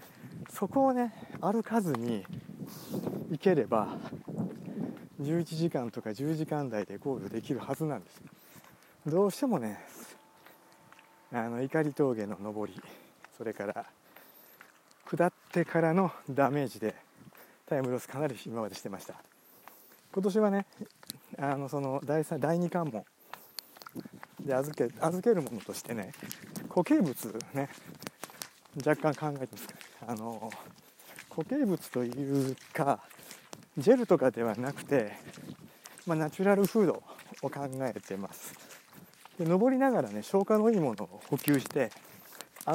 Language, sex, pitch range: Japanese, male, 130-195 Hz